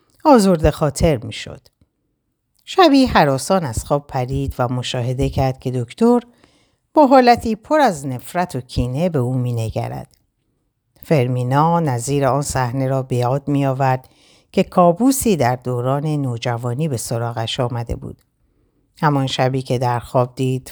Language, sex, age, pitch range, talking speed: Persian, female, 60-79, 125-160 Hz, 135 wpm